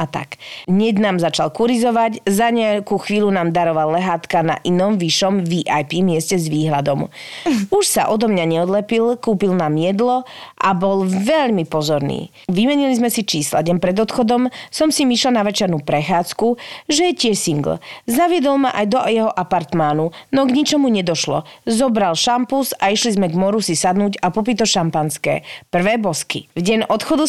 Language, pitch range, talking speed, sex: Slovak, 180-240 Hz, 165 wpm, female